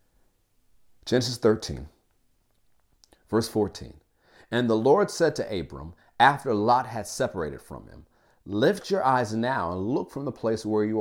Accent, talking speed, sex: American, 145 wpm, male